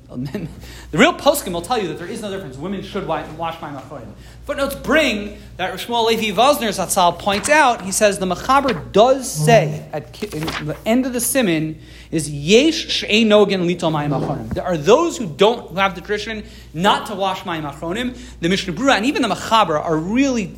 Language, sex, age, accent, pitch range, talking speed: English, male, 40-59, American, 170-225 Hz, 180 wpm